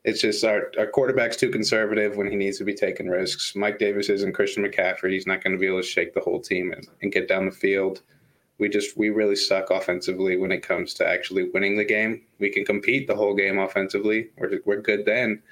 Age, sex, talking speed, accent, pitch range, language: 20-39, male, 240 wpm, American, 100-115 Hz, English